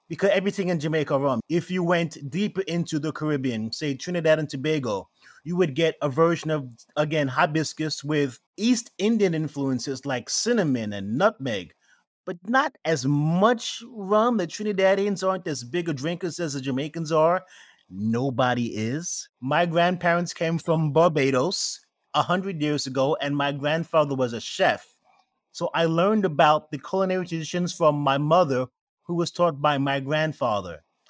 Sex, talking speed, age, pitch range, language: male, 155 wpm, 30-49, 145-180 Hz, English